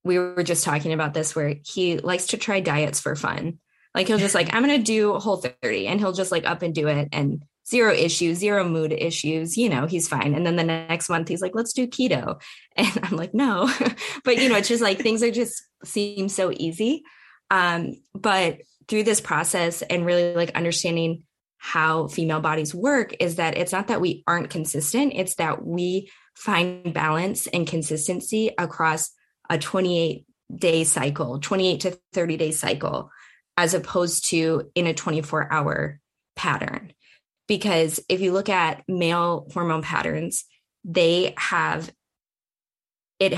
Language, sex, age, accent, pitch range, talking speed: English, female, 20-39, American, 160-195 Hz, 165 wpm